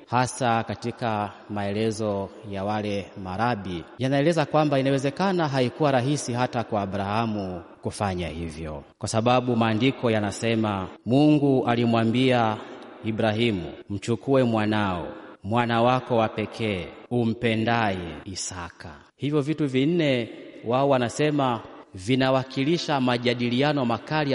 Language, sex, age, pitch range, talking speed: Swahili, male, 30-49, 100-130 Hz, 95 wpm